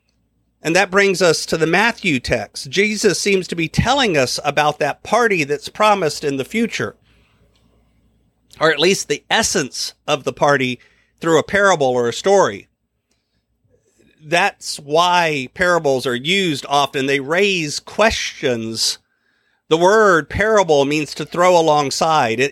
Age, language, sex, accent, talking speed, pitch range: 40-59, English, male, American, 140 wpm, 150-200 Hz